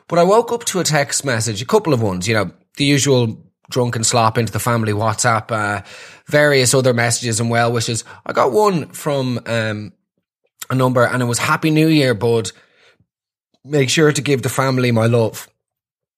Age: 20-39